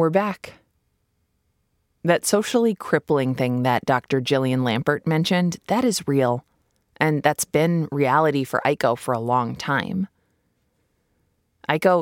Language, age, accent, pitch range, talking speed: English, 20-39, American, 130-185 Hz, 125 wpm